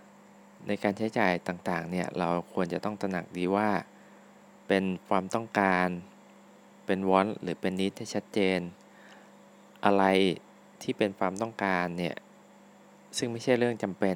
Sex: male